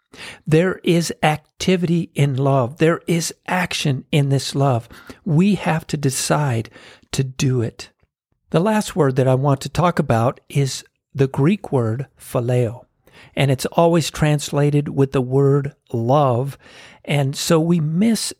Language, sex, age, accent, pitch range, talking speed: English, male, 50-69, American, 135-170 Hz, 145 wpm